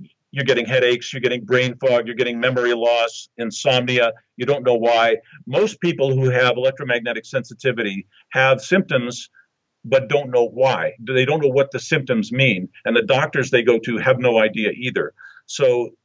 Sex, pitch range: male, 115-145 Hz